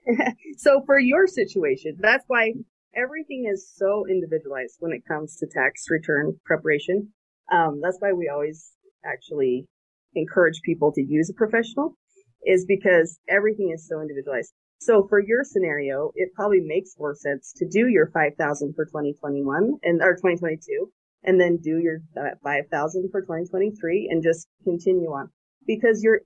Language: English